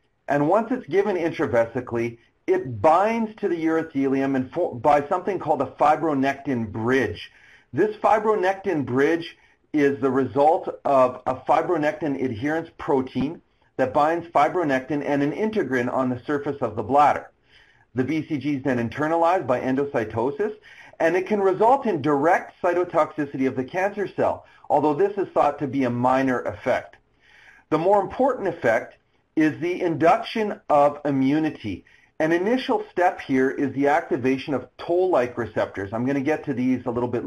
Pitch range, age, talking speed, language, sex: 125-170 Hz, 40-59, 150 wpm, English, male